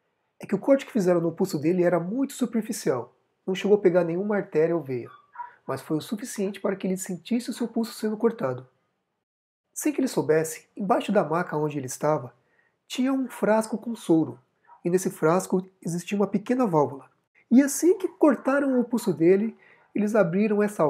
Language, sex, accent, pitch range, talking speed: Portuguese, male, Brazilian, 150-230 Hz, 185 wpm